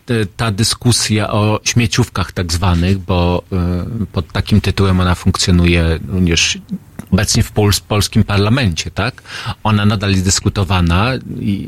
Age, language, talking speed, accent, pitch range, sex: 40-59, Polish, 120 wpm, native, 95-115 Hz, male